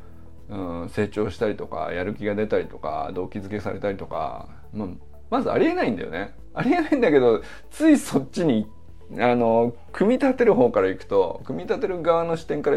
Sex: male